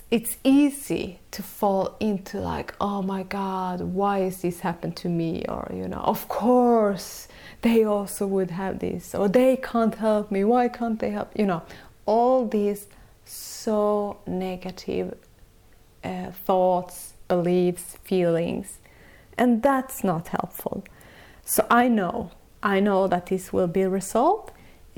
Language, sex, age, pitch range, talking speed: Swedish, female, 30-49, 185-240 Hz, 140 wpm